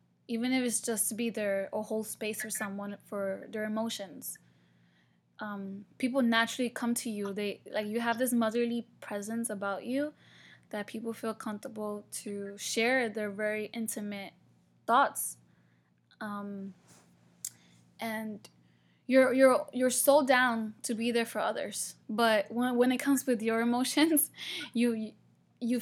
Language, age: English, 10-29